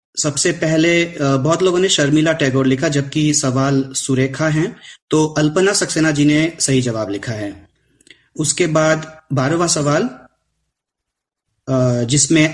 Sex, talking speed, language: male, 125 wpm, Hindi